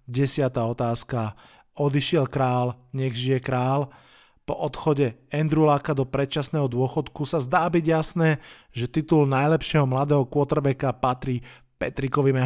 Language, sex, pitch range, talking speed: Slovak, male, 130-160 Hz, 120 wpm